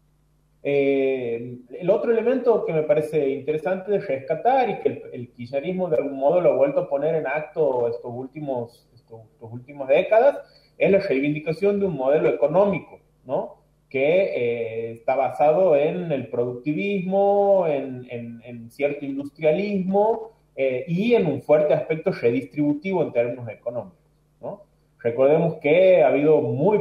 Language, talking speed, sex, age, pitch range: Spanish, 150 wpm, male, 30-49, 130-180 Hz